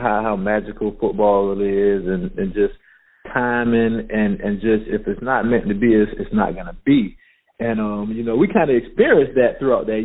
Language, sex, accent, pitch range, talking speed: English, male, American, 115-150 Hz, 215 wpm